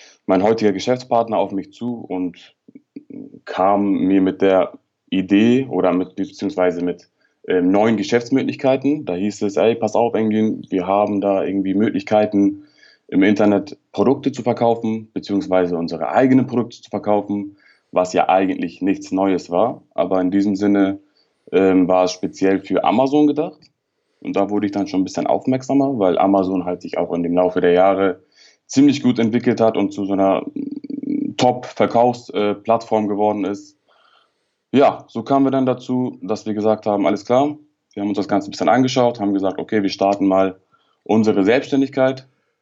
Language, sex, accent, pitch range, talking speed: German, male, German, 95-120 Hz, 160 wpm